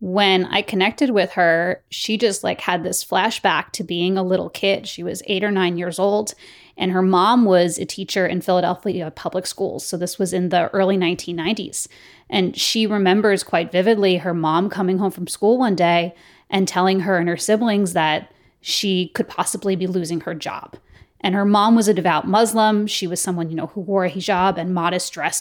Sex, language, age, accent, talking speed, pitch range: female, English, 20-39, American, 205 wpm, 180-210 Hz